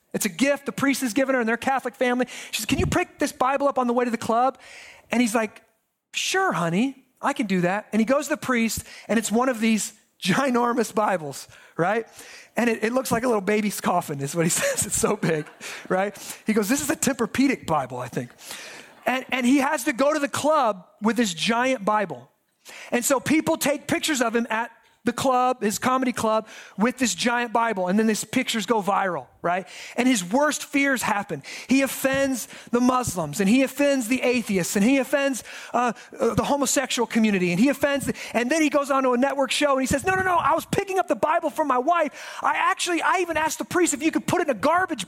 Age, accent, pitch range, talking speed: 30-49, American, 220-280 Hz, 235 wpm